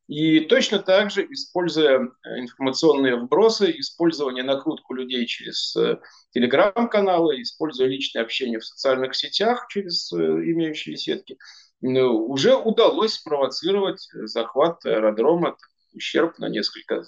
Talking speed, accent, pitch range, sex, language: 100 wpm, native, 125-195 Hz, male, Russian